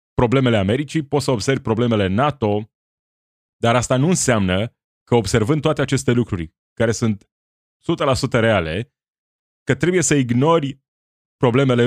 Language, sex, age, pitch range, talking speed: Romanian, male, 30-49, 100-135 Hz, 125 wpm